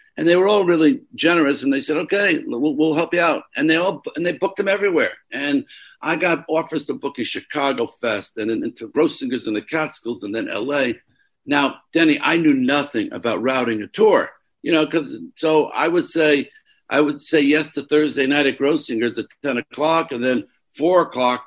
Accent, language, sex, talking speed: American, English, male, 205 wpm